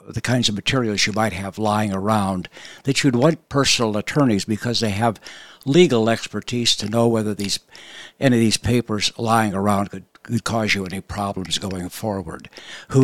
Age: 60-79